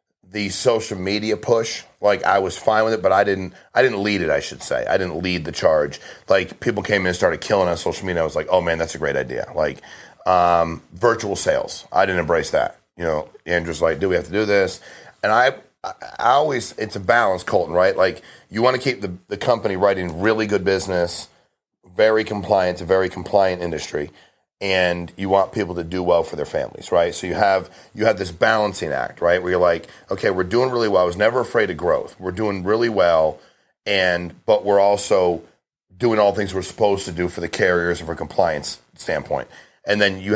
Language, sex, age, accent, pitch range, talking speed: English, male, 40-59, American, 90-105 Hz, 220 wpm